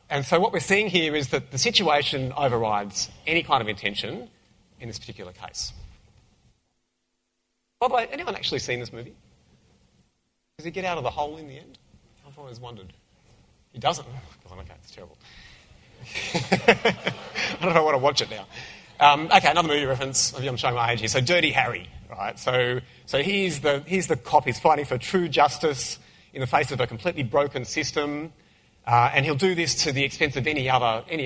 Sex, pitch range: male, 105-145 Hz